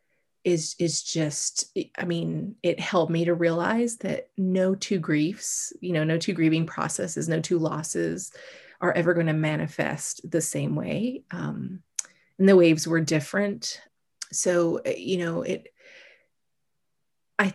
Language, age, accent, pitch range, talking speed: English, 30-49, American, 160-195 Hz, 145 wpm